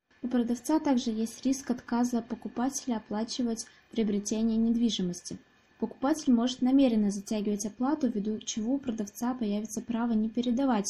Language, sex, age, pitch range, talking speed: Russian, female, 20-39, 205-245 Hz, 125 wpm